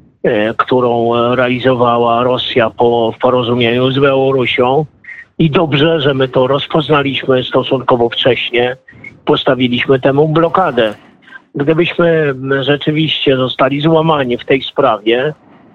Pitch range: 125-150 Hz